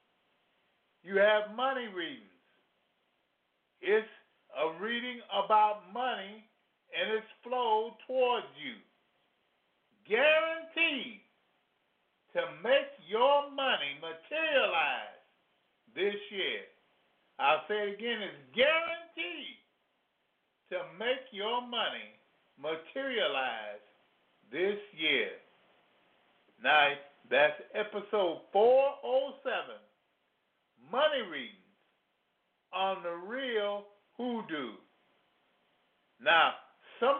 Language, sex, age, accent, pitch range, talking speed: English, male, 50-69, American, 195-270 Hz, 75 wpm